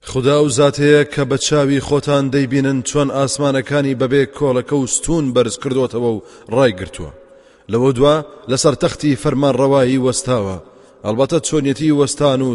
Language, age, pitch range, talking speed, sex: English, 30-49, 120-145 Hz, 125 wpm, male